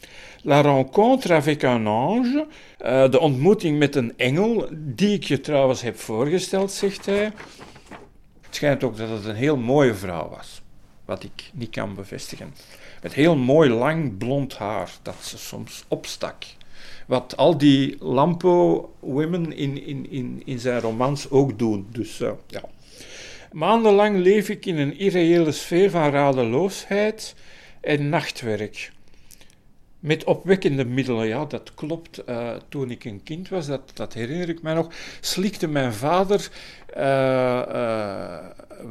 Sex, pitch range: male, 120-165 Hz